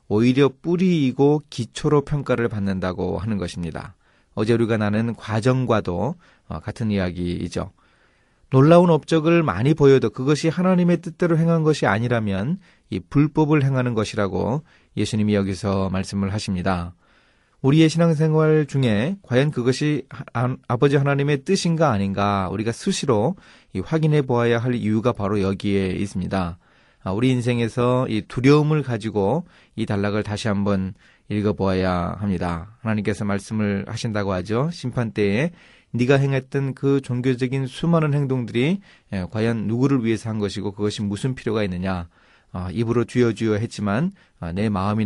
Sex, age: male, 30-49